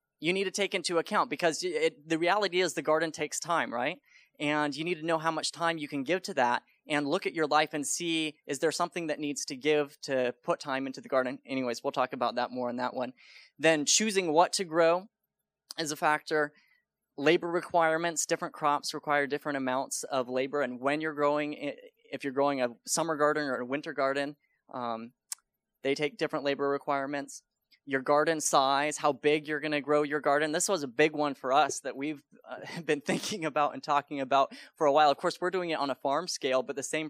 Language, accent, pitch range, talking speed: English, American, 135-160 Hz, 220 wpm